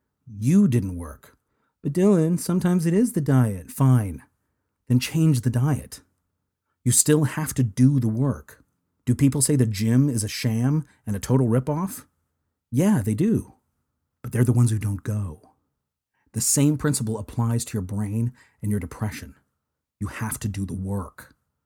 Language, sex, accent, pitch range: English, male, American, 105-135 Hz